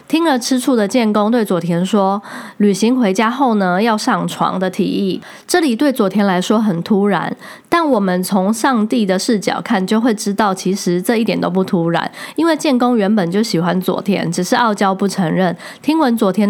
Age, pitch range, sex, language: 20-39, 190-245 Hz, female, Chinese